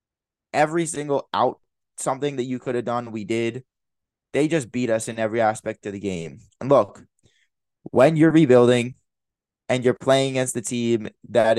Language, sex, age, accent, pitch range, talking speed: English, male, 20-39, American, 115-140 Hz, 170 wpm